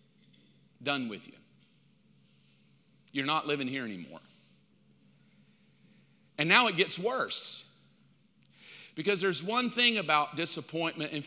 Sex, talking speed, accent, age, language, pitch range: male, 105 wpm, American, 40-59, English, 155-200 Hz